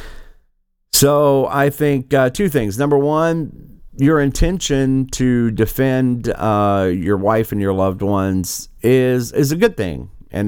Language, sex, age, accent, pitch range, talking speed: English, male, 50-69, American, 95-130 Hz, 145 wpm